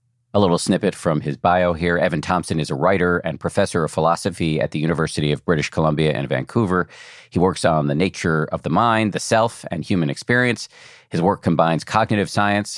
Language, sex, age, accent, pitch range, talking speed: English, male, 40-59, American, 80-115 Hz, 195 wpm